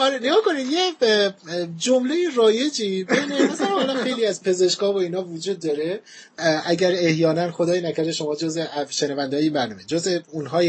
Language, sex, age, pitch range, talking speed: Persian, male, 30-49, 160-215 Hz, 145 wpm